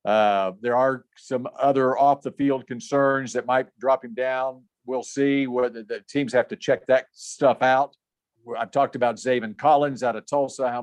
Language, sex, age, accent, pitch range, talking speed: English, male, 50-69, American, 125-145 Hz, 175 wpm